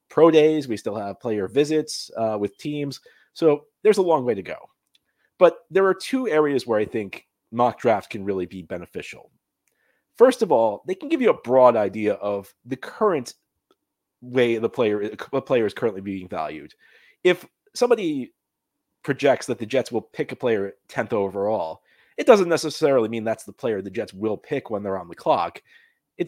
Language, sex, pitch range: English, male, 100-140 Hz